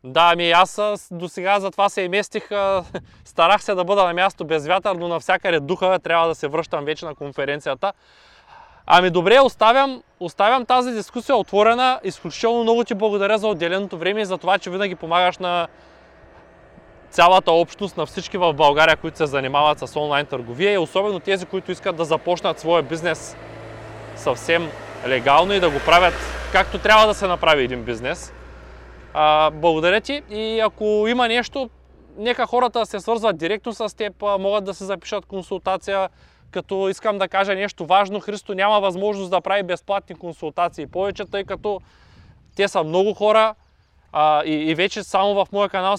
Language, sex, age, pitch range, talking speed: Bulgarian, male, 20-39, 165-205 Hz, 170 wpm